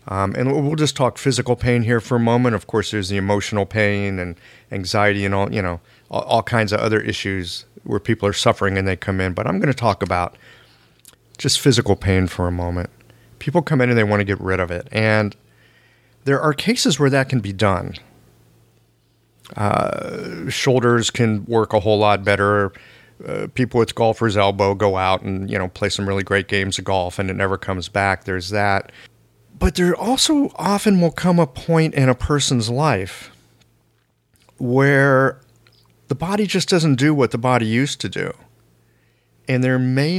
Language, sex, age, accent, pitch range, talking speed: English, male, 40-59, American, 100-140 Hz, 190 wpm